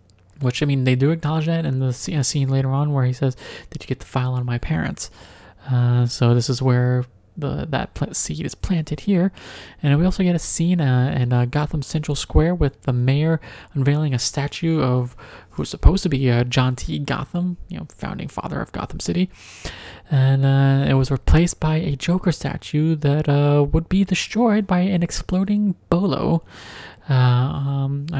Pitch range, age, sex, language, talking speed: 125-160 Hz, 30-49, male, English, 185 wpm